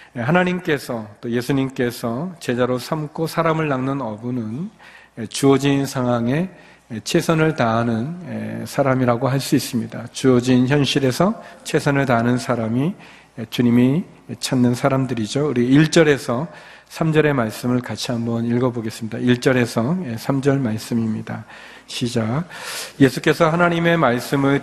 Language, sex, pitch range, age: Korean, male, 120-145 Hz, 40-59